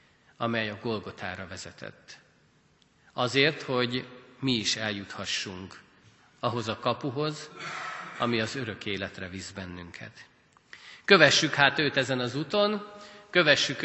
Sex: male